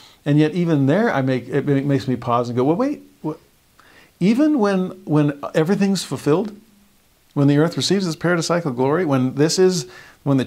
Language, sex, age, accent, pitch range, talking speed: English, male, 50-69, American, 120-170 Hz, 185 wpm